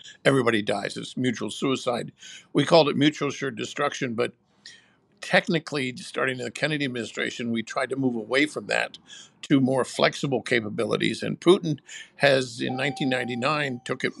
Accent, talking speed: American, 150 wpm